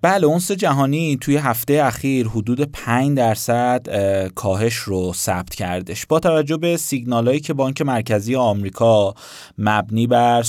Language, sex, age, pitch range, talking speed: Persian, male, 30-49, 110-145 Hz, 130 wpm